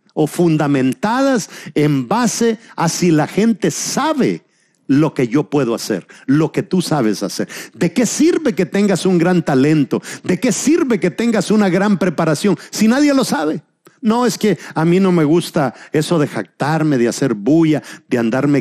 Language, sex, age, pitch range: Spanish, male, 50-69, 155-235 Hz